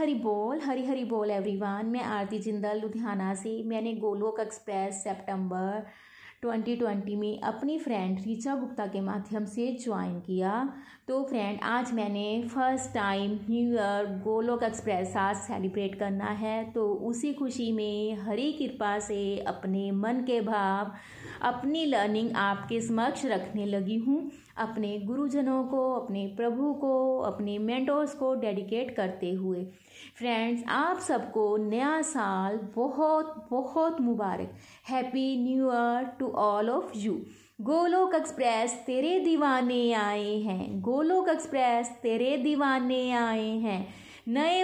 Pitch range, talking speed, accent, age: 210-270 Hz, 130 wpm, native, 30-49